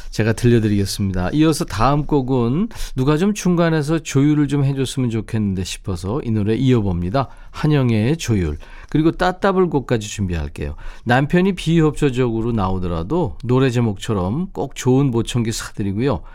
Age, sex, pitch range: 40-59, male, 105-150 Hz